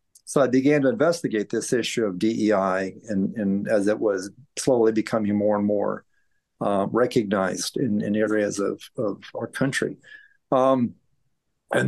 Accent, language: American, English